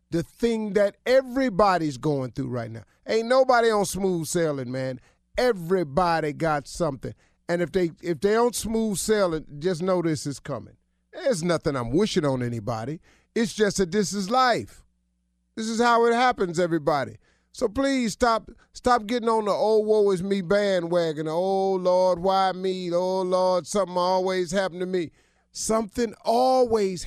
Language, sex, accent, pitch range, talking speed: English, male, American, 125-210 Hz, 165 wpm